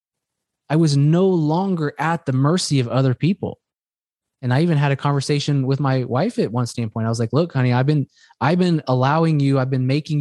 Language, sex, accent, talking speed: English, male, American, 210 wpm